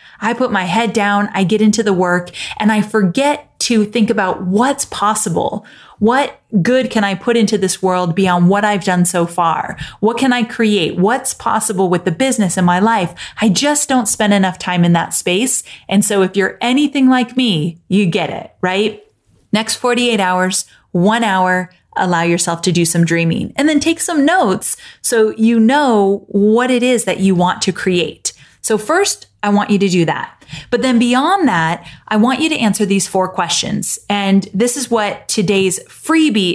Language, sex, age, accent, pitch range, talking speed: English, female, 30-49, American, 180-225 Hz, 190 wpm